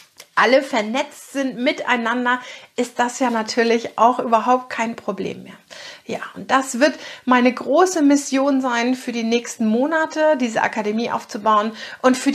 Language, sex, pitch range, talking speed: German, female, 225-275 Hz, 145 wpm